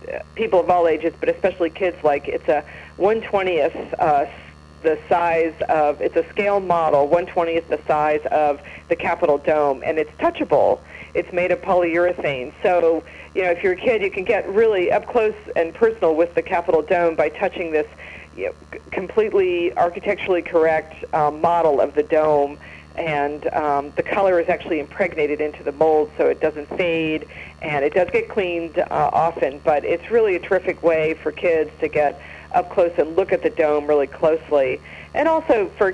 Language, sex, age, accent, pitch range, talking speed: English, female, 40-59, American, 155-200 Hz, 185 wpm